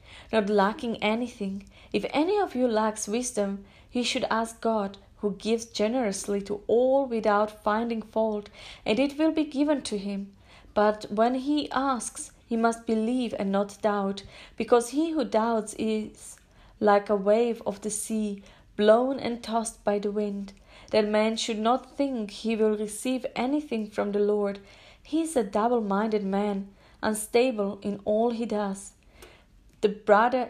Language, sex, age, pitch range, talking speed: English, female, 30-49, 210-240 Hz, 155 wpm